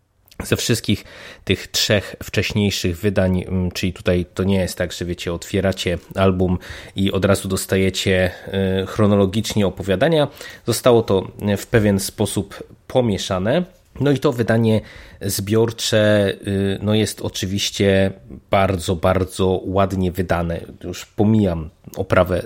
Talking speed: 110 wpm